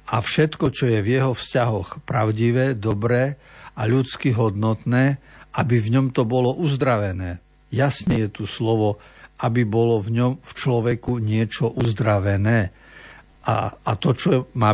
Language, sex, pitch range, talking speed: Slovak, male, 110-135 Hz, 145 wpm